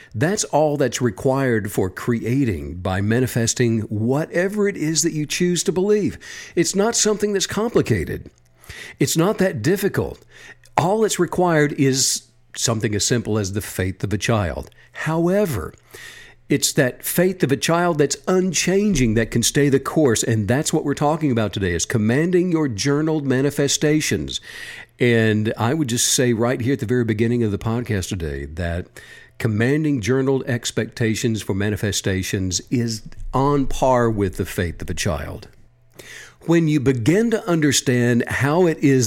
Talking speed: 155 wpm